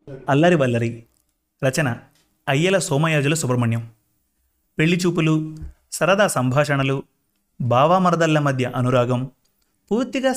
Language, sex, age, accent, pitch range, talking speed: Telugu, male, 30-49, native, 125-175 Hz, 80 wpm